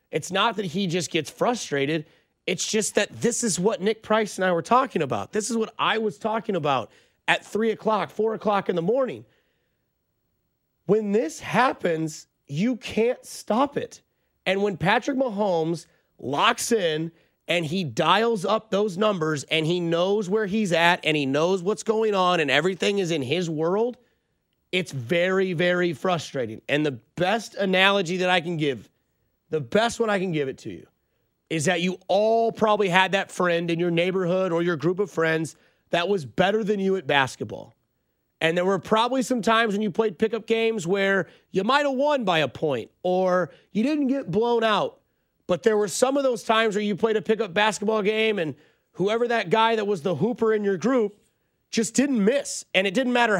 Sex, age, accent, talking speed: male, 30-49, American, 195 wpm